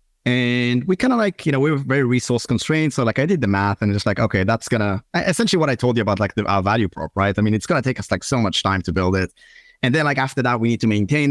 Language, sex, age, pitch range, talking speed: English, male, 30-49, 105-140 Hz, 300 wpm